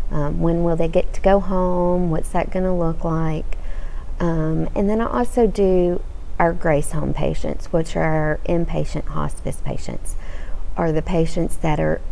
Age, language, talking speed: 40-59, English, 165 wpm